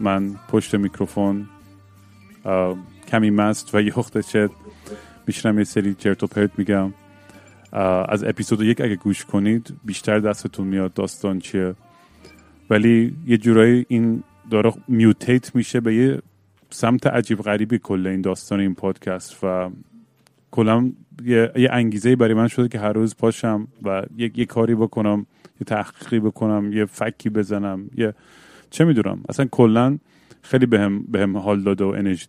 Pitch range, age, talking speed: 100-120 Hz, 30-49, 145 wpm